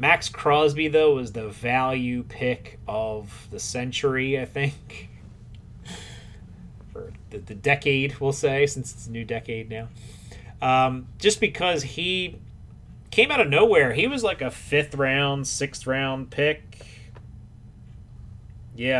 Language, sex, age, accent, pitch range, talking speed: English, male, 30-49, American, 115-150 Hz, 135 wpm